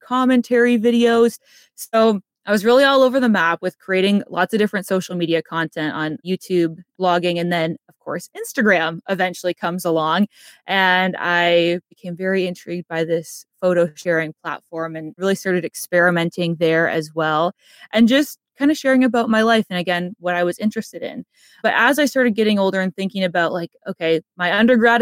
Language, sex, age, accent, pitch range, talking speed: English, female, 20-39, American, 175-225 Hz, 180 wpm